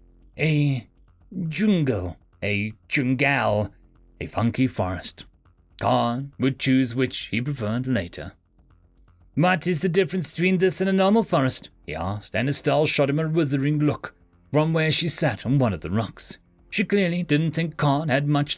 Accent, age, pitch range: British, 30-49, 100-170 Hz